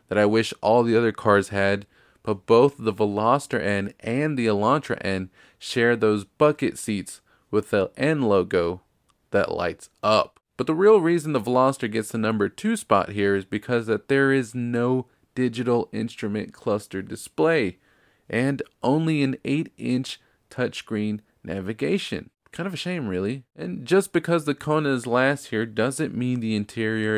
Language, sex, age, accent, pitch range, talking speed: English, male, 20-39, American, 100-130 Hz, 165 wpm